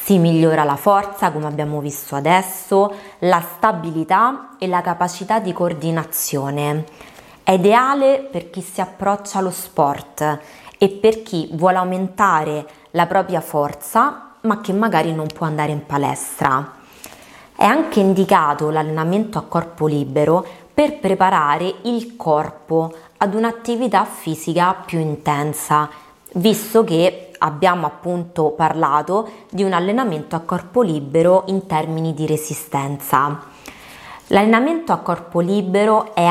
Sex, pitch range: female, 155-200 Hz